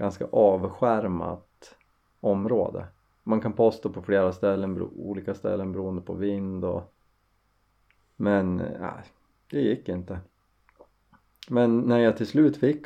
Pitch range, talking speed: 95-115 Hz, 120 wpm